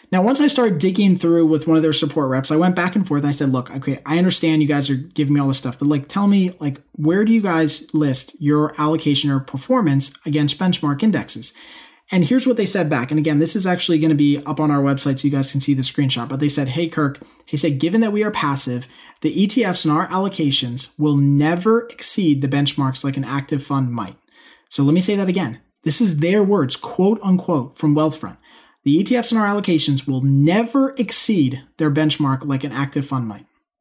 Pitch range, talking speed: 145-190 Hz, 230 wpm